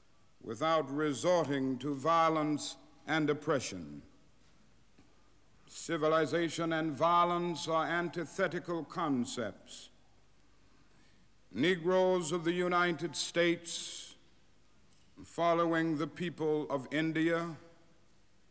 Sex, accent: male, American